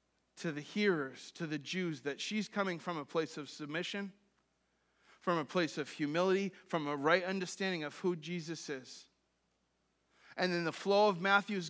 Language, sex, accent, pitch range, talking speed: English, male, American, 140-185 Hz, 170 wpm